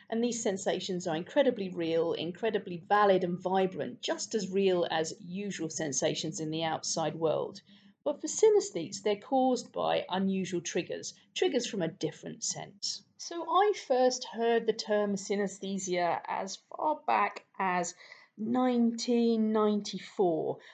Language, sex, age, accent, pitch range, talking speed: English, female, 40-59, British, 170-240 Hz, 130 wpm